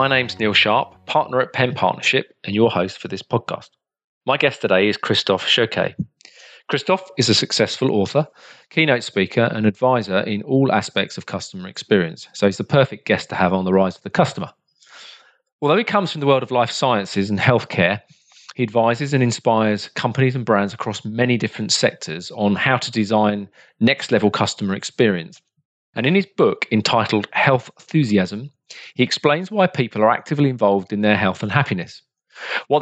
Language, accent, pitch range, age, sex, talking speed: English, British, 105-135 Hz, 40-59, male, 175 wpm